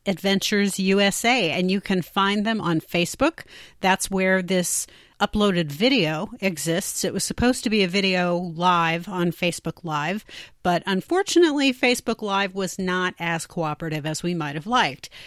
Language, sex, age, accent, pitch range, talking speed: English, female, 40-59, American, 175-210 Hz, 155 wpm